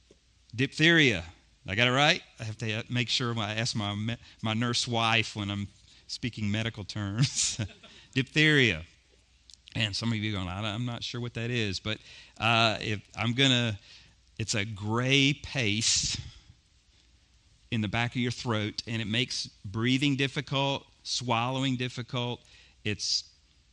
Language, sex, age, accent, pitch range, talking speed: English, male, 40-59, American, 100-125 Hz, 145 wpm